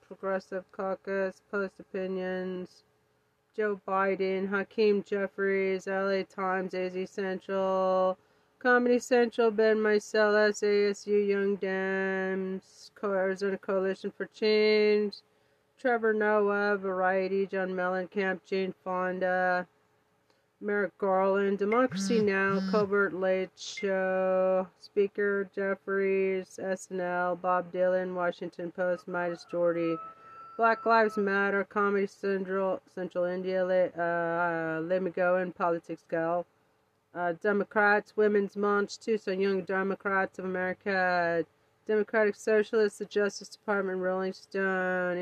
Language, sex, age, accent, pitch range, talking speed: English, female, 30-49, American, 180-205 Hz, 100 wpm